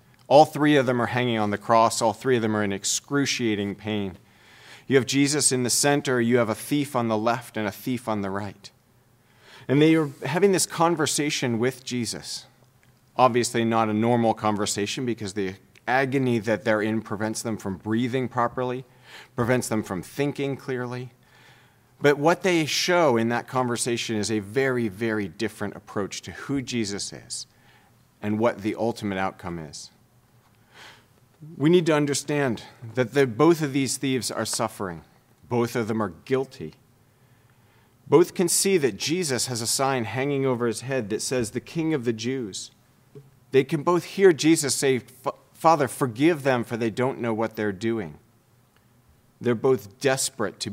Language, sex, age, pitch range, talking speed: English, male, 40-59, 110-135 Hz, 170 wpm